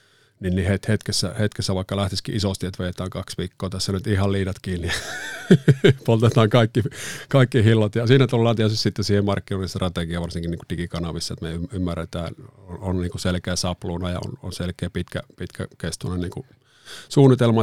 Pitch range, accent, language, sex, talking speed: 90-115 Hz, native, Finnish, male, 165 wpm